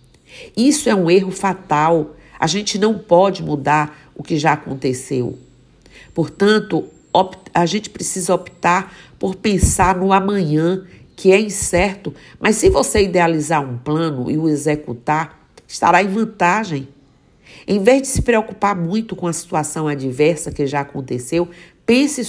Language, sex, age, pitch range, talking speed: Portuguese, female, 50-69, 150-190 Hz, 140 wpm